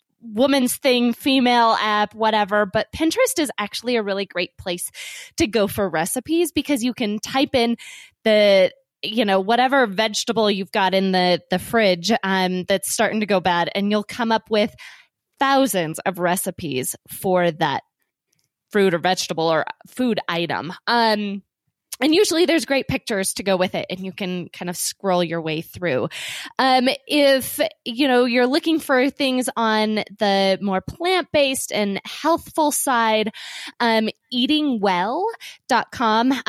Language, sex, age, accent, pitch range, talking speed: English, female, 20-39, American, 190-260 Hz, 150 wpm